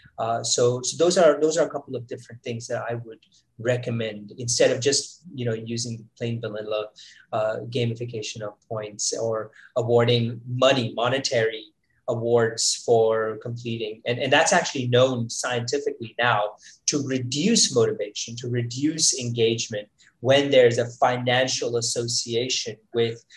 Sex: male